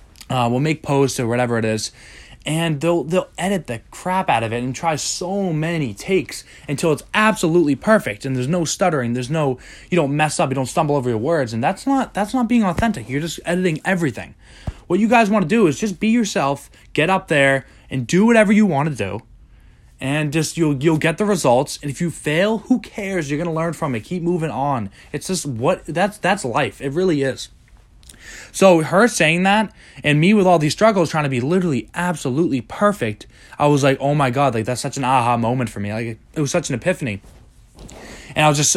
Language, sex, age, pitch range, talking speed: English, male, 20-39, 125-170 Hz, 220 wpm